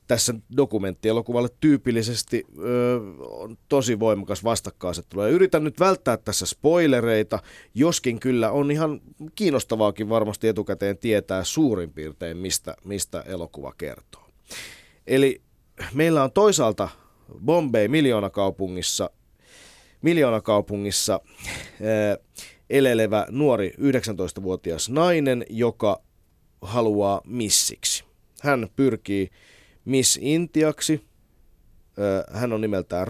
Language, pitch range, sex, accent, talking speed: Finnish, 95-130 Hz, male, native, 80 wpm